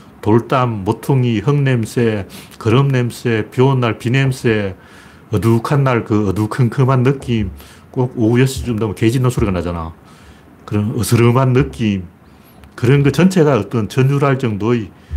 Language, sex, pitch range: Korean, male, 90-135 Hz